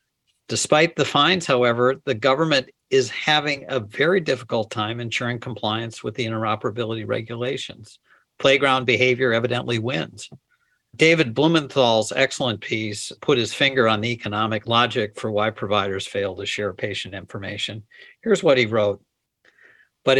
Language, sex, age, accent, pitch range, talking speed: English, male, 50-69, American, 110-135 Hz, 135 wpm